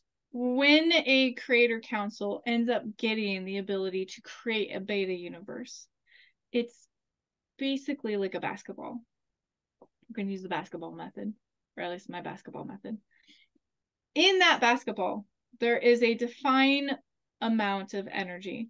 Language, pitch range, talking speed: English, 205-255 Hz, 135 wpm